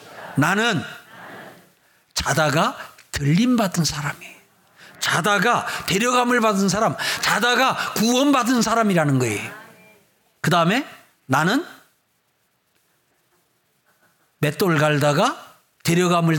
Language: Korean